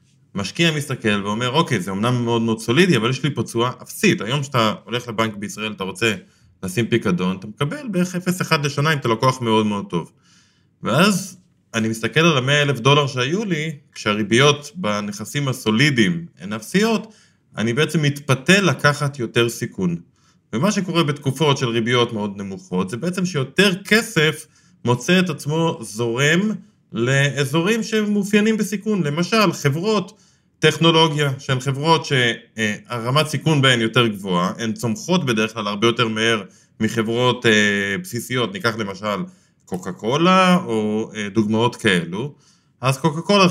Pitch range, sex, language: 115-165 Hz, male, Hebrew